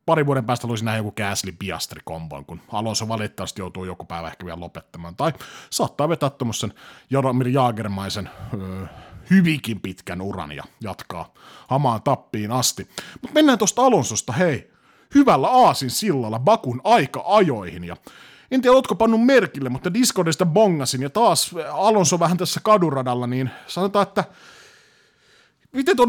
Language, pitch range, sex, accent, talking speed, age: Finnish, 115-190 Hz, male, native, 135 wpm, 30-49